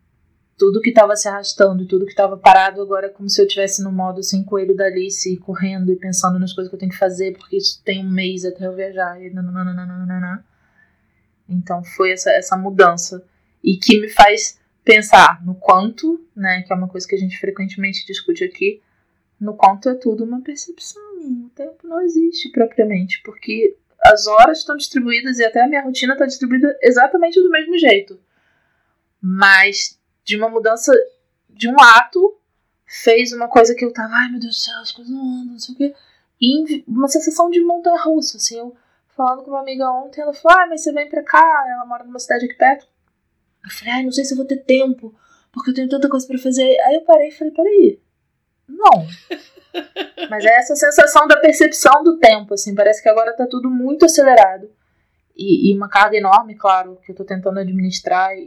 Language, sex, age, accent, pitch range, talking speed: Portuguese, female, 20-39, Brazilian, 195-290 Hz, 200 wpm